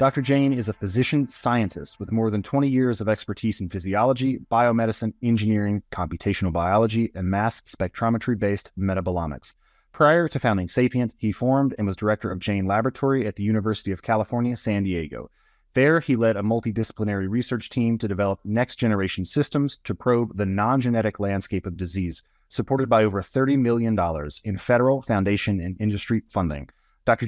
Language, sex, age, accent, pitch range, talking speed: English, male, 30-49, American, 95-120 Hz, 165 wpm